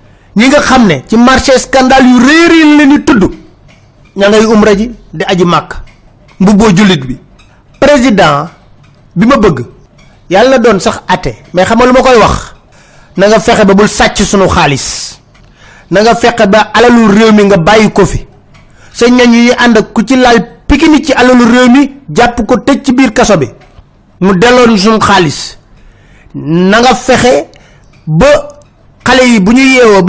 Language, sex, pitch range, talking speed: French, male, 185-250 Hz, 120 wpm